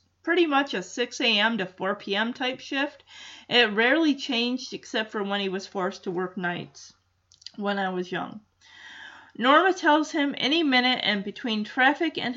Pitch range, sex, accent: 195-275 Hz, female, American